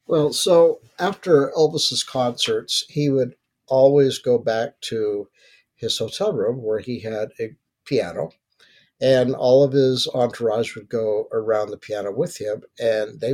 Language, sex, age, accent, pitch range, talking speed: English, male, 60-79, American, 115-140 Hz, 150 wpm